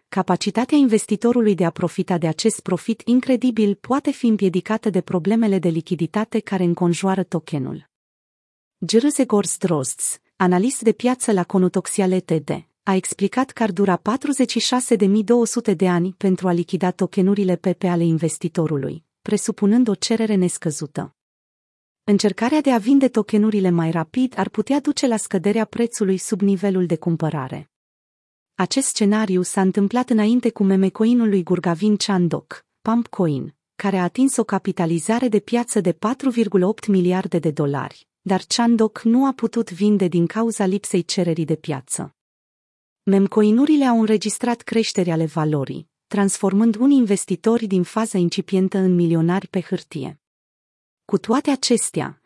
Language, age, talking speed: Romanian, 30-49, 135 wpm